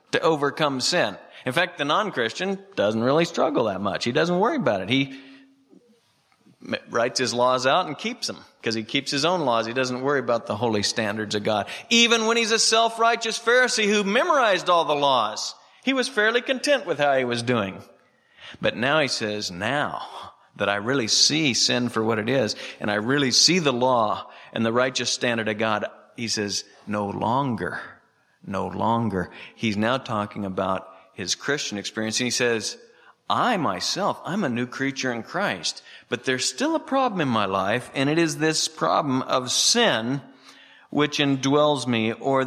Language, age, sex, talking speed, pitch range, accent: English, 50-69, male, 180 wpm, 115-160 Hz, American